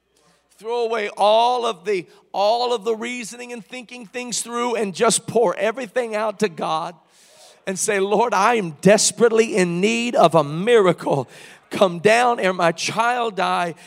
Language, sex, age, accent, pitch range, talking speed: English, male, 50-69, American, 205-265 Hz, 160 wpm